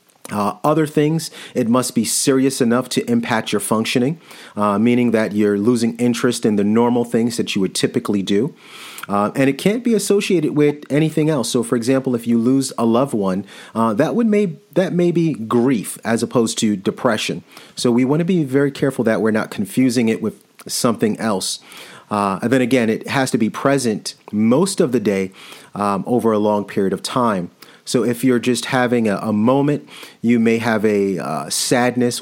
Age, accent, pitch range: 40-59, American, 110-140 Hz